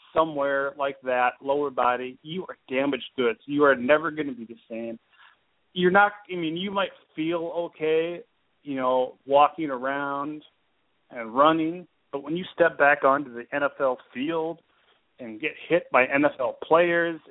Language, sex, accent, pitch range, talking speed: English, male, American, 125-165 Hz, 160 wpm